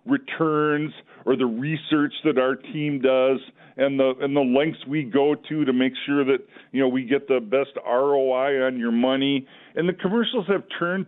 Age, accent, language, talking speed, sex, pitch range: 50-69, American, English, 190 wpm, male, 130-160 Hz